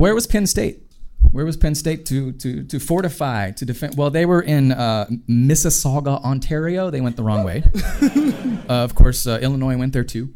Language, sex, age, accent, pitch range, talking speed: English, male, 30-49, American, 105-155 Hz, 195 wpm